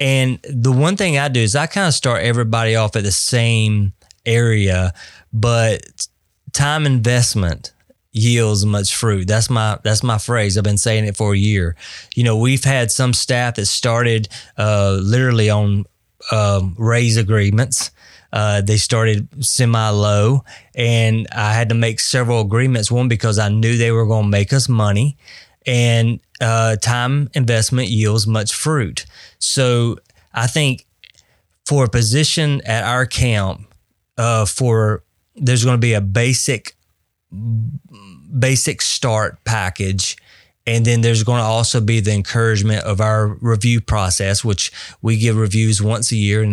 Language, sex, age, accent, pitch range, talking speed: English, male, 20-39, American, 105-120 Hz, 155 wpm